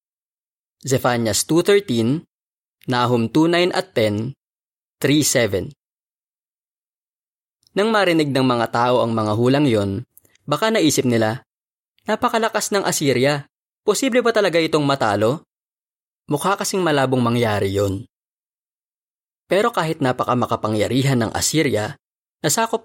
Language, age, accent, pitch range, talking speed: Filipino, 20-39, native, 115-155 Hz, 100 wpm